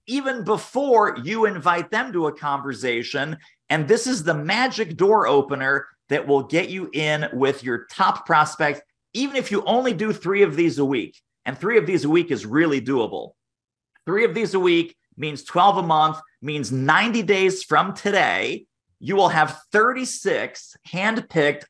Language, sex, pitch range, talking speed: English, male, 145-195 Hz, 170 wpm